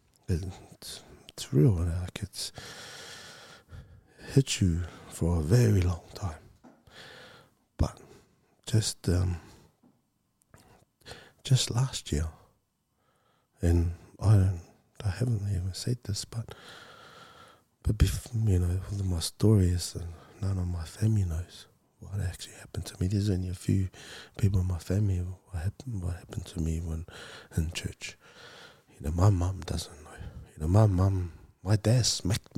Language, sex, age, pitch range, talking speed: English, male, 20-39, 90-110 Hz, 135 wpm